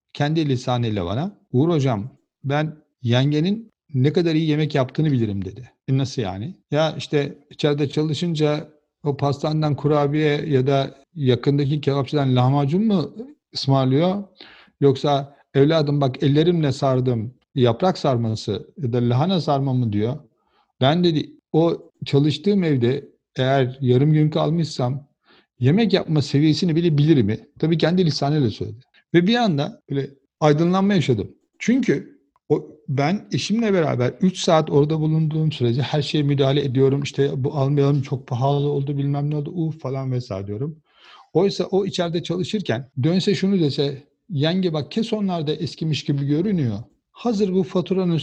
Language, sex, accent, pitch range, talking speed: Turkish, male, native, 135-170 Hz, 140 wpm